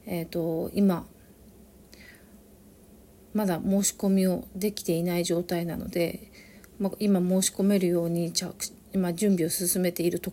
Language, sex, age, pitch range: Japanese, female, 40-59, 175-200 Hz